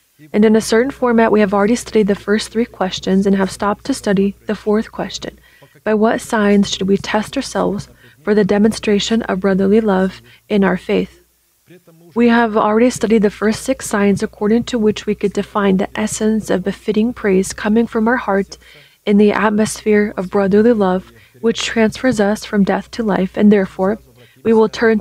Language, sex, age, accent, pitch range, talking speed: English, female, 20-39, American, 190-220 Hz, 185 wpm